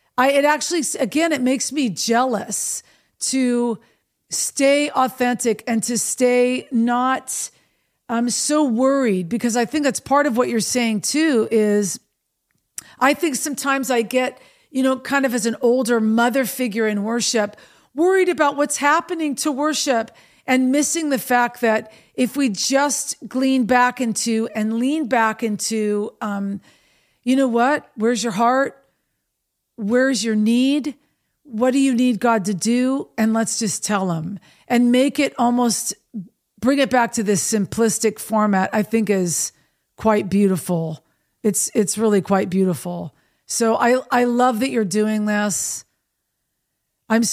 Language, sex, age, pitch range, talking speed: English, female, 50-69, 215-260 Hz, 150 wpm